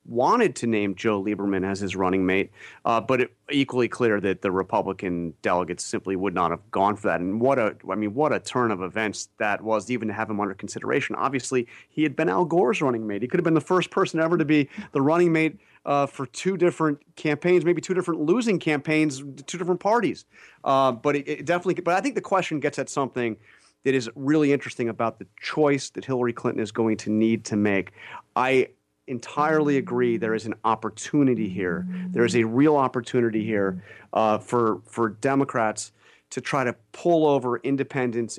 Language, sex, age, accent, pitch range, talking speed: English, male, 30-49, American, 110-145 Hz, 205 wpm